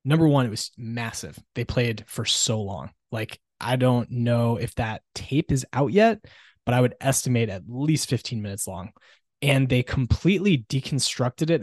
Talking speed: 175 wpm